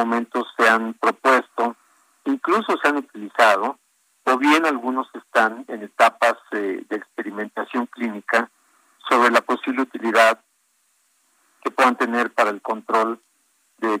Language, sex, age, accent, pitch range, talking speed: Spanish, male, 50-69, Mexican, 115-135 Hz, 125 wpm